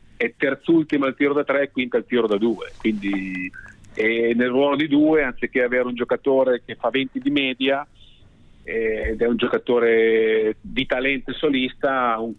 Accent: native